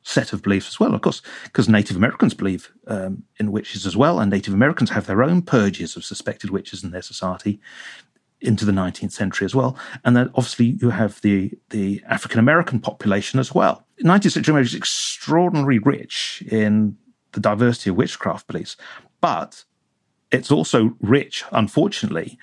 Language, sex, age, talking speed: English, male, 40-59, 170 wpm